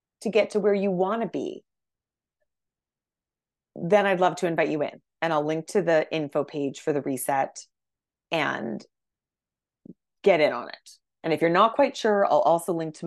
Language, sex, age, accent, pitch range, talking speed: English, female, 30-49, American, 150-205 Hz, 185 wpm